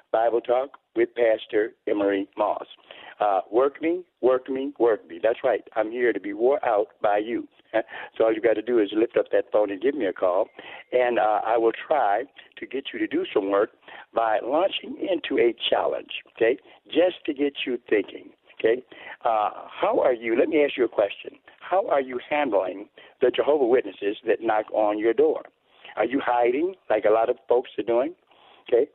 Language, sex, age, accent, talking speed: English, male, 60-79, American, 200 wpm